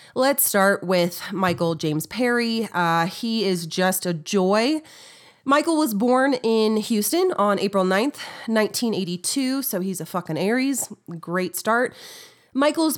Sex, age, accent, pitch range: female, 30-49, American, 180-265 Hz